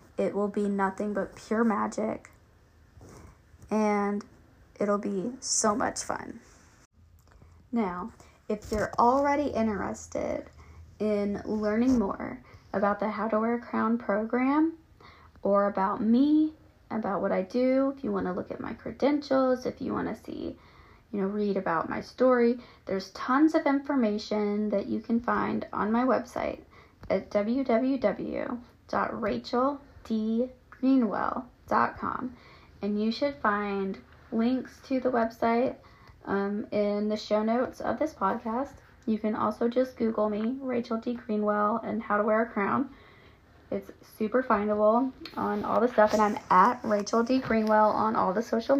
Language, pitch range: English, 205-250 Hz